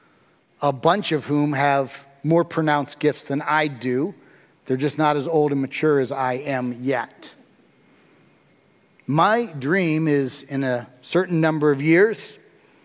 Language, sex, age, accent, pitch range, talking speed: English, male, 40-59, American, 135-160 Hz, 145 wpm